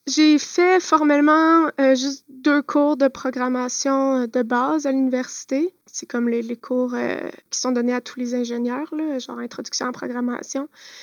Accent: Canadian